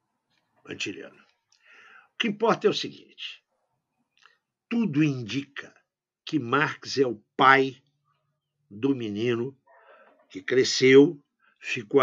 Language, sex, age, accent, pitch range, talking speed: Portuguese, male, 60-79, Brazilian, 120-200 Hz, 95 wpm